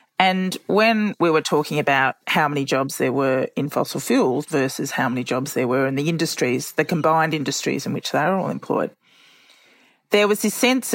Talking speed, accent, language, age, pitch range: 195 wpm, Australian, English, 40-59, 145-200 Hz